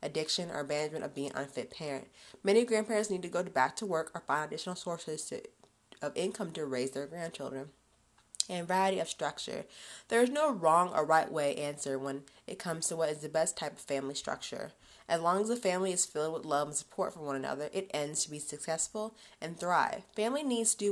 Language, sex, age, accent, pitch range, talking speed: English, female, 20-39, American, 150-200 Hz, 220 wpm